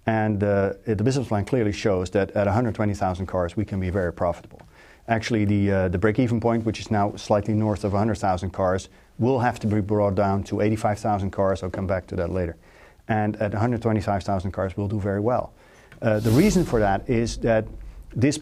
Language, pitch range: English, 100-115 Hz